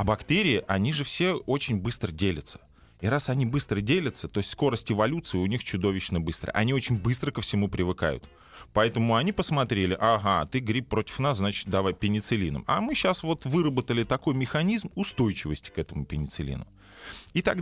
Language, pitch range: Russian, 95-140 Hz